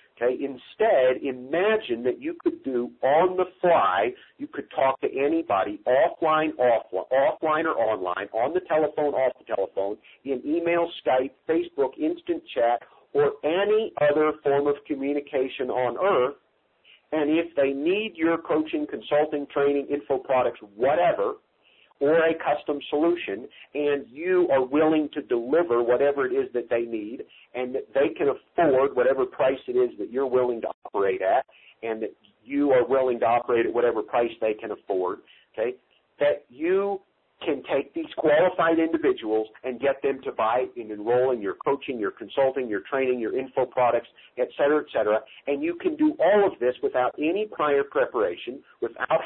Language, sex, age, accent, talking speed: English, male, 50-69, American, 165 wpm